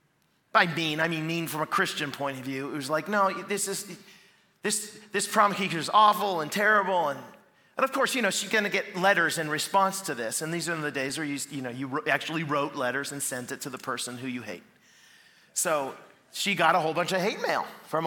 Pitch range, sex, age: 145-195 Hz, male, 40-59